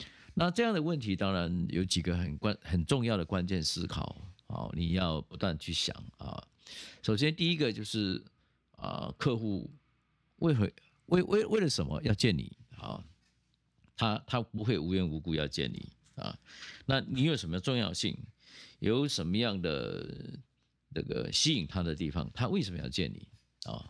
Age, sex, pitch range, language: 50-69, male, 90-135 Hz, Chinese